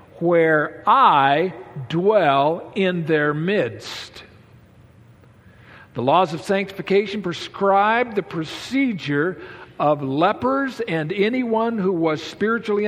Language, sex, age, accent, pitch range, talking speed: English, male, 50-69, American, 125-190 Hz, 95 wpm